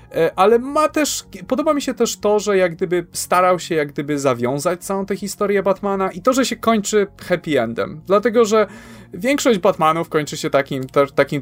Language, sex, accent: Polish, male, native